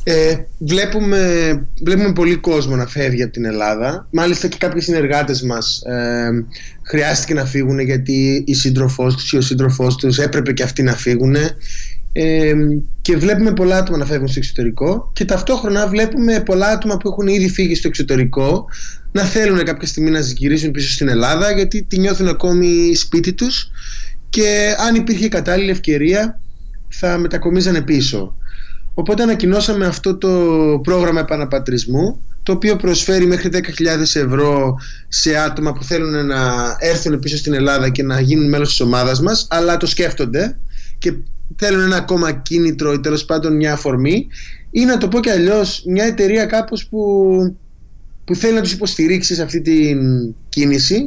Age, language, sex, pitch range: 20-39, Greek, male, 135-190 Hz